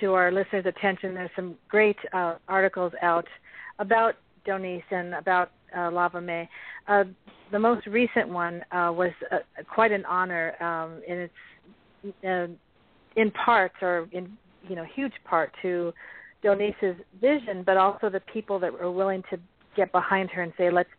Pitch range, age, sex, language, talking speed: 175-200 Hz, 40-59, female, English, 165 wpm